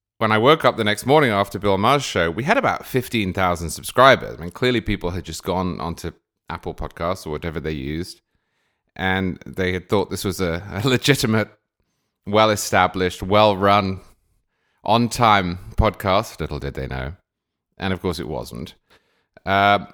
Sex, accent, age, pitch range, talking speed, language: male, British, 30-49, 85-110 Hz, 160 wpm, English